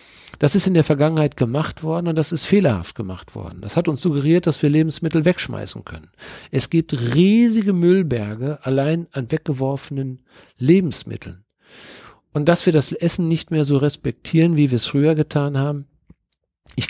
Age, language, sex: 50-69, German, male